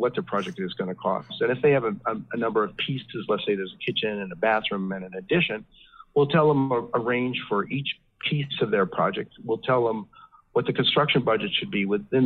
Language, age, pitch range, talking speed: English, 50-69, 100-140 Hz, 235 wpm